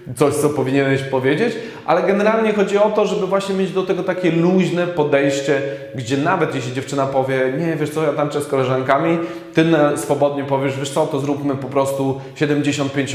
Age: 20-39